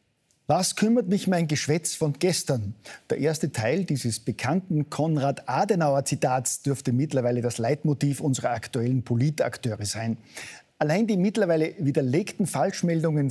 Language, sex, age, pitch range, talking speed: German, male, 50-69, 125-160 Hz, 115 wpm